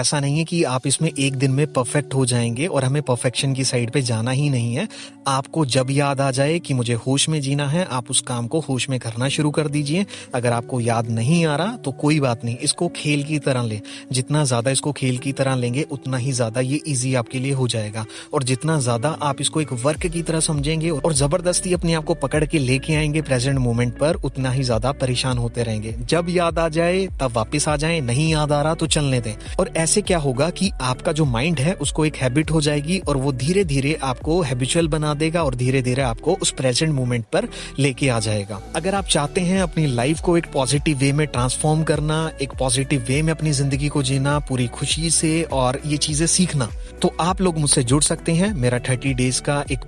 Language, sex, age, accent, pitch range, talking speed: Hindi, male, 30-49, native, 130-160 Hz, 215 wpm